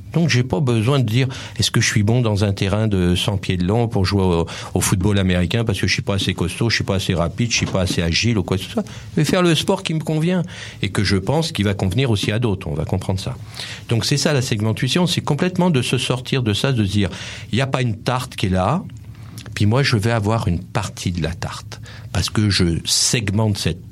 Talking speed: 275 wpm